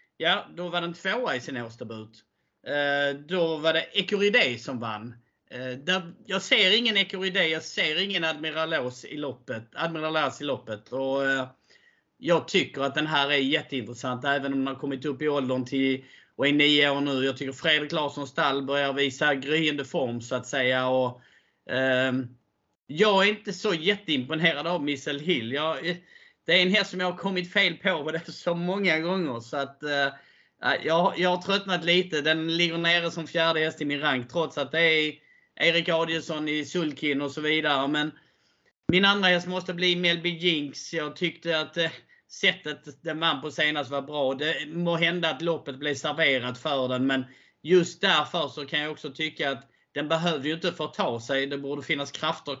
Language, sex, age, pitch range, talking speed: Swedish, male, 30-49, 140-170 Hz, 190 wpm